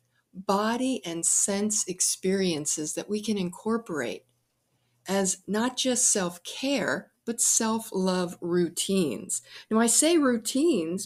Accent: American